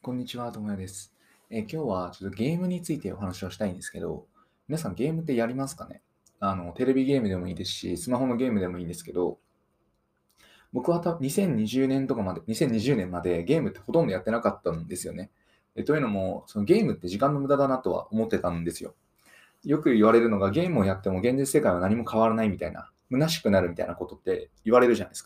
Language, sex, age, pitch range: Japanese, male, 20-39, 95-150 Hz